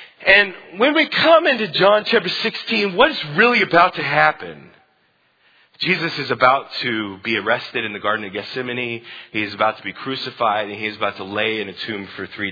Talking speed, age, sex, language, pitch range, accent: 190 wpm, 30-49, male, English, 125-185 Hz, American